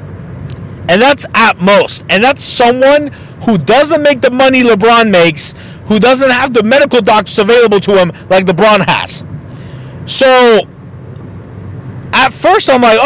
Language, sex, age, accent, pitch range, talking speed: English, male, 40-59, American, 180-255 Hz, 140 wpm